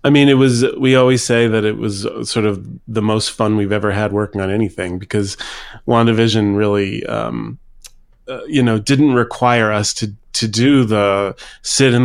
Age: 30-49